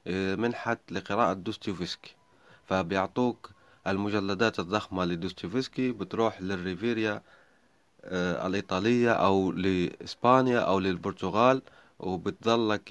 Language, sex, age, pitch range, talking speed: Arabic, male, 30-49, 95-115 Hz, 75 wpm